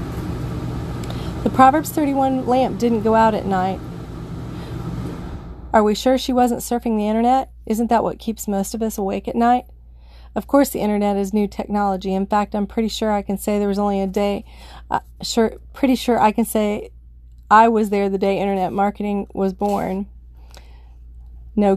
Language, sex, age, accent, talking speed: English, female, 30-49, American, 175 wpm